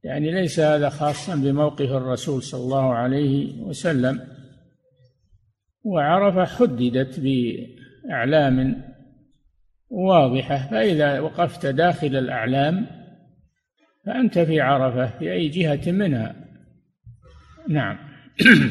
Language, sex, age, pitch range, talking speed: Arabic, male, 50-69, 130-165 Hz, 85 wpm